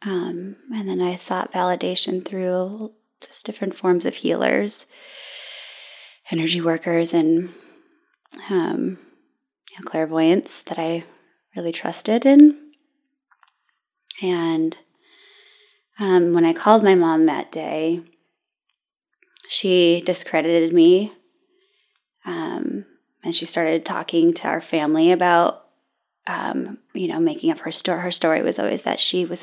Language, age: English, 20-39